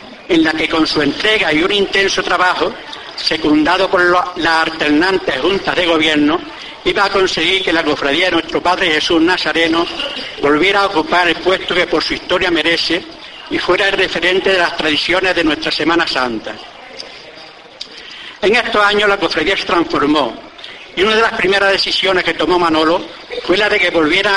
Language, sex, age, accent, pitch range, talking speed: Spanish, male, 60-79, Spanish, 165-195 Hz, 170 wpm